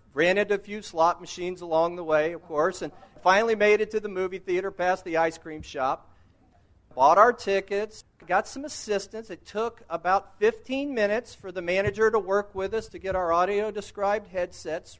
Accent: American